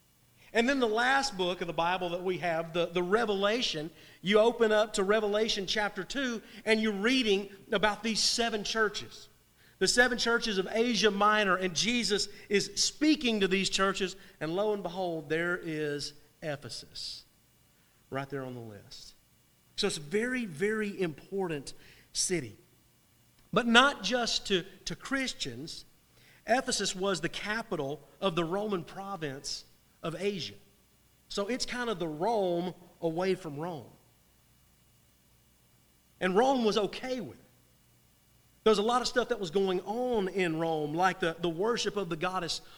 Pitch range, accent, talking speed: 170-230 Hz, American, 155 wpm